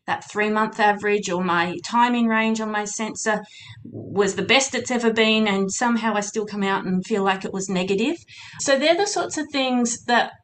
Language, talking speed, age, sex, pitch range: English, 205 wpm, 30-49, female, 195-225 Hz